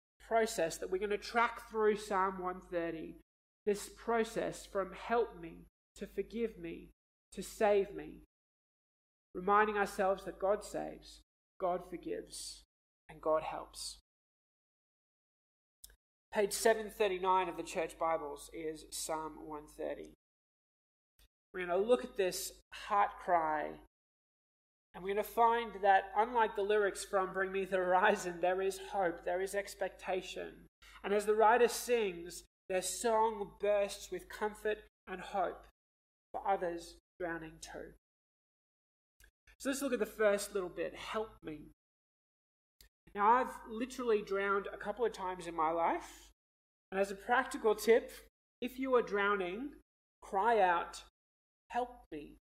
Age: 20-39